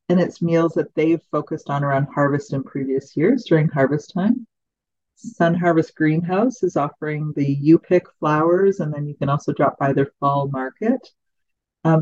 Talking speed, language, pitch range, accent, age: 170 wpm, English, 150-180 Hz, American, 40-59